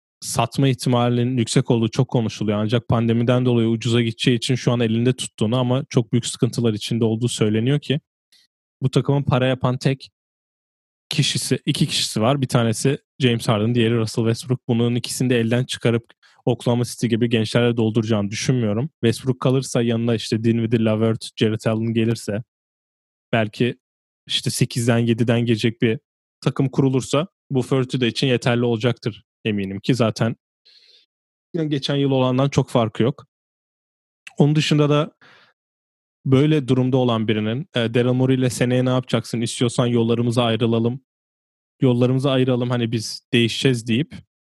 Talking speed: 140 wpm